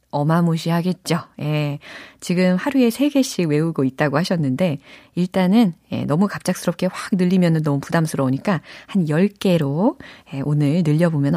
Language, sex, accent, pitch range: Korean, female, native, 150-215 Hz